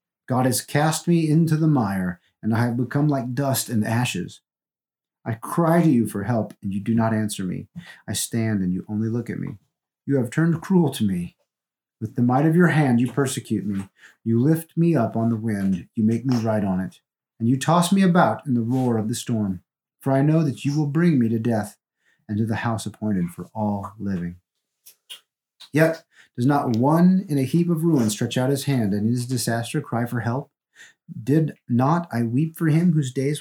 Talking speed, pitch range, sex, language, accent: 215 wpm, 105-150 Hz, male, English, American